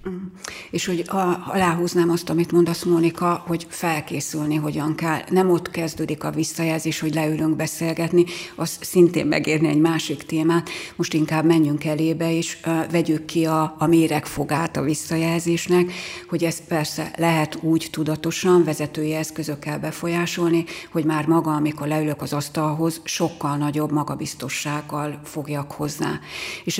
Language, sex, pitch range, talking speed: Hungarian, female, 155-170 Hz, 135 wpm